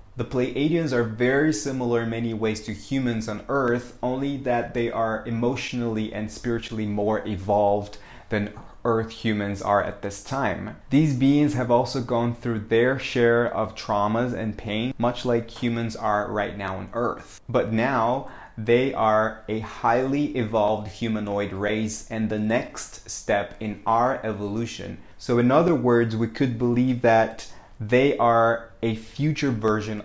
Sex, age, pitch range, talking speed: male, 20-39, 105-120 Hz, 155 wpm